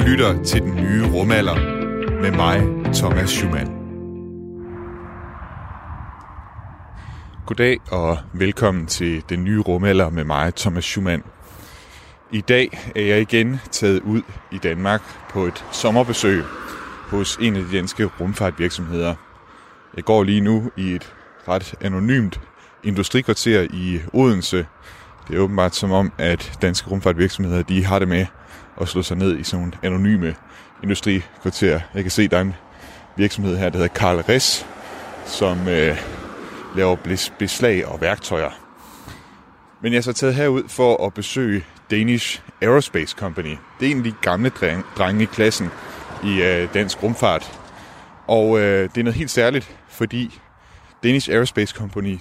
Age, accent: 30-49, native